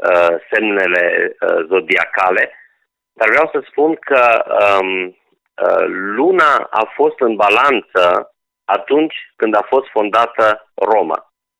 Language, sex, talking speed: Romanian, male, 95 wpm